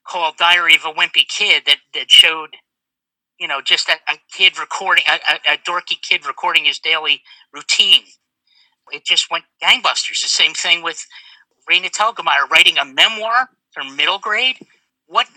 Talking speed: 165 wpm